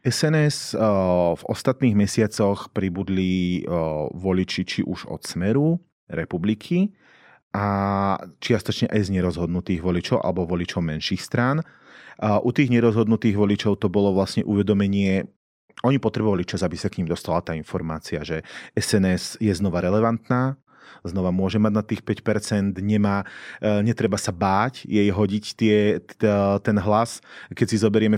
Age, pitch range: 30-49, 95-110 Hz